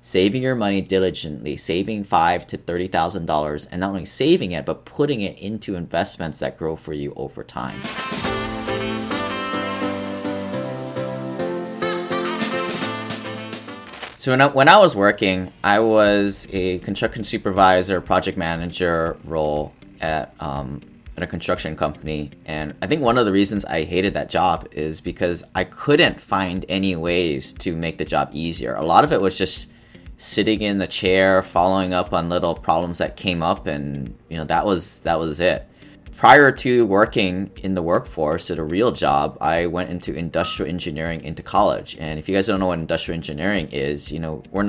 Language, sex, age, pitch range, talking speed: English, male, 30-49, 80-95 Hz, 170 wpm